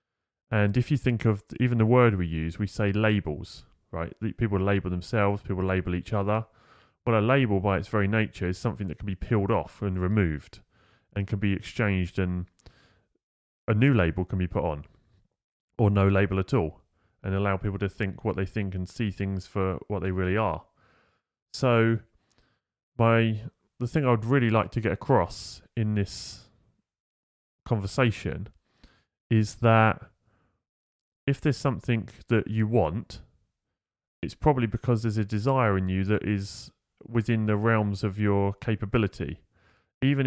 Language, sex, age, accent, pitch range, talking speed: English, male, 30-49, British, 95-115 Hz, 160 wpm